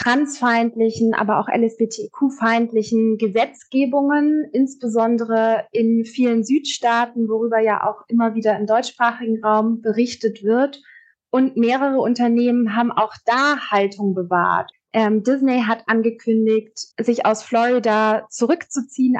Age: 20-39